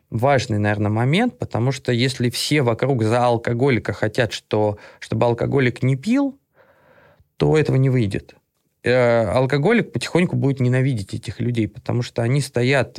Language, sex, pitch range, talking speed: English, male, 115-145 Hz, 145 wpm